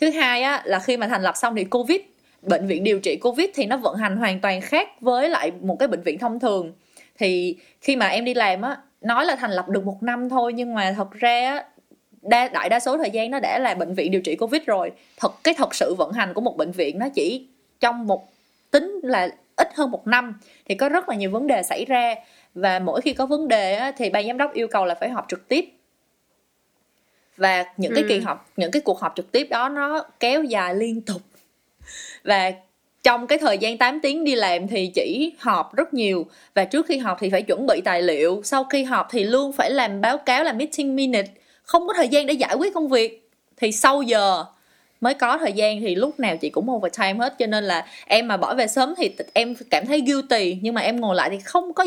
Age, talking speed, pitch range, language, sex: 20-39, 240 wpm, 200-285 Hz, Vietnamese, female